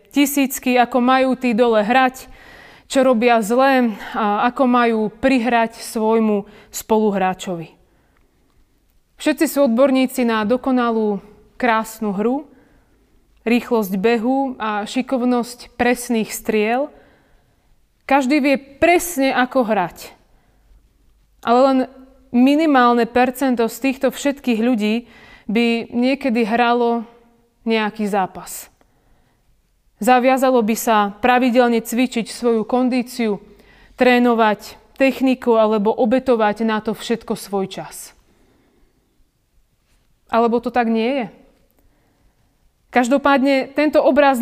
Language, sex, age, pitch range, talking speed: Slovak, female, 30-49, 220-260 Hz, 95 wpm